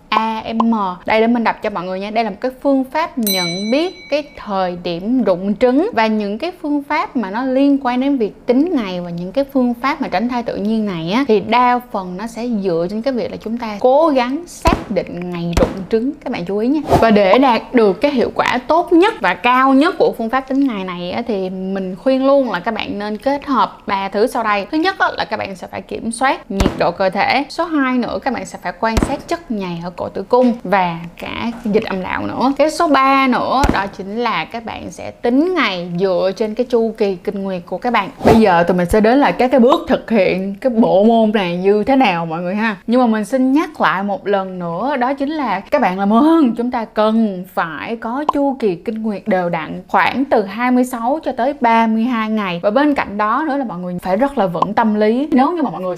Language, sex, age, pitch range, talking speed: Vietnamese, female, 10-29, 195-265 Hz, 250 wpm